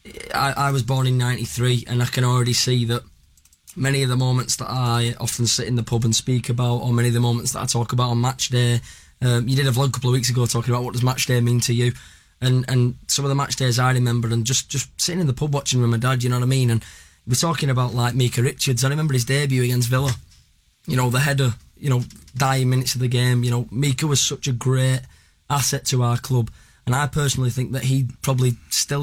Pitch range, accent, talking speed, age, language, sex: 120-130 Hz, British, 255 wpm, 20-39, English, male